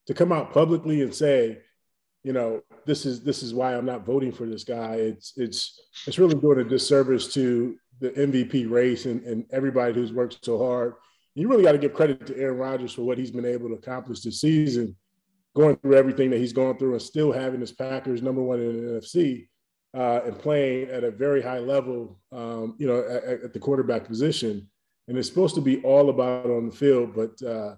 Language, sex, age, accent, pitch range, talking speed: English, male, 30-49, American, 115-140 Hz, 220 wpm